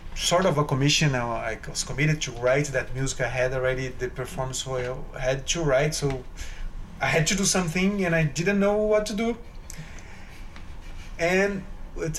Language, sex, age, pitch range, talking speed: English, male, 30-49, 120-160 Hz, 175 wpm